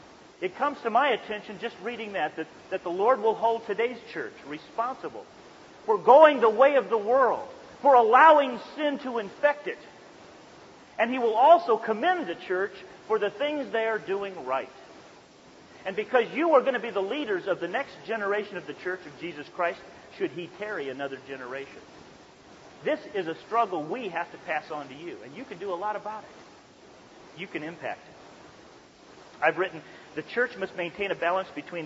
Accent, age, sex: American, 40-59, male